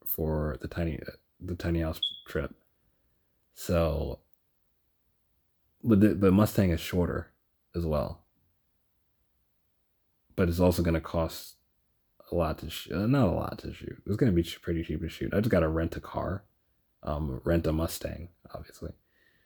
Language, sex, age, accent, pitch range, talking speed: English, male, 30-49, American, 80-95 Hz, 165 wpm